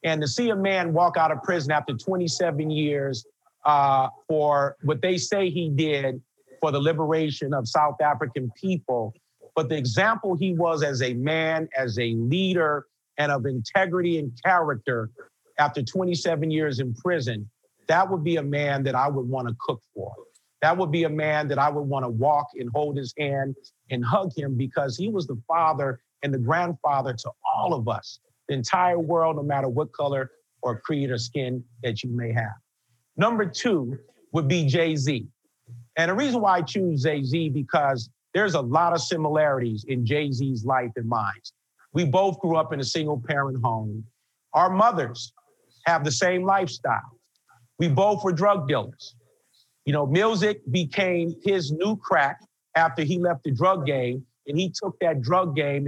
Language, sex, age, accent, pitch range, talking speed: English, male, 50-69, American, 130-170 Hz, 180 wpm